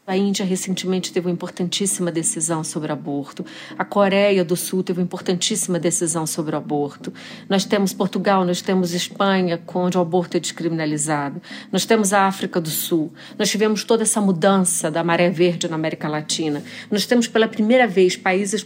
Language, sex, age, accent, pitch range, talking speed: Portuguese, female, 40-59, Brazilian, 175-235 Hz, 175 wpm